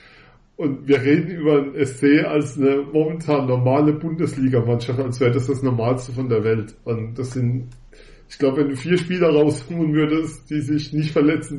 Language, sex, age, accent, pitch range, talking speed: German, male, 40-59, German, 130-160 Hz, 175 wpm